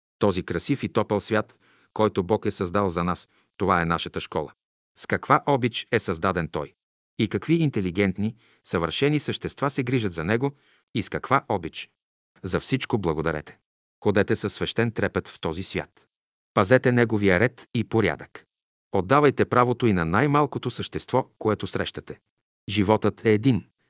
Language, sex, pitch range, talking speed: Bulgarian, male, 95-120 Hz, 150 wpm